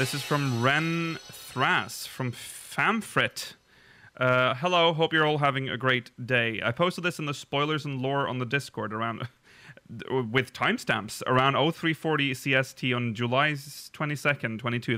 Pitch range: 125-155 Hz